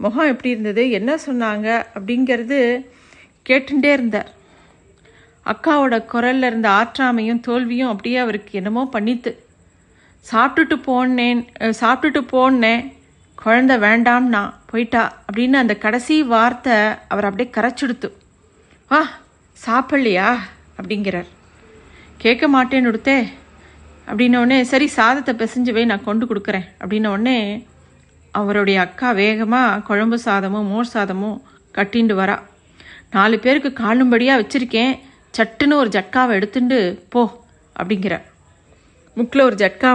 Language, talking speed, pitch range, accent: Tamil, 100 wpm, 210-255 Hz, native